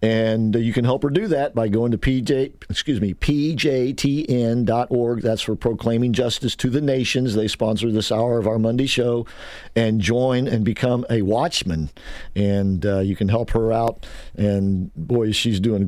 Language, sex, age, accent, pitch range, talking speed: English, male, 50-69, American, 115-145 Hz, 175 wpm